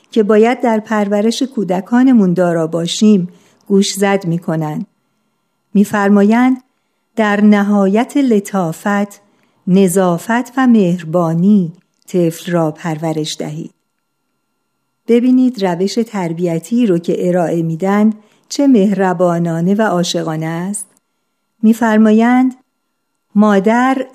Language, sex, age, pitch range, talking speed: Persian, female, 50-69, 180-225 Hz, 85 wpm